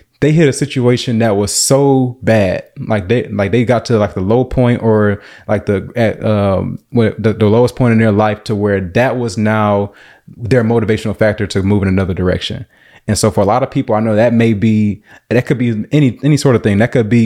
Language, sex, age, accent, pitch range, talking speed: English, male, 20-39, American, 105-125 Hz, 230 wpm